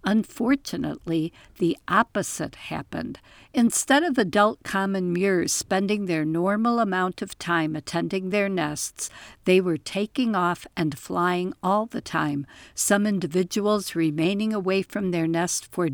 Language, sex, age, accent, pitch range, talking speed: English, female, 60-79, American, 165-215 Hz, 130 wpm